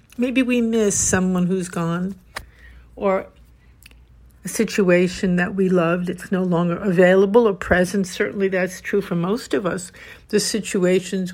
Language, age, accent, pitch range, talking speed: English, 60-79, American, 180-220 Hz, 145 wpm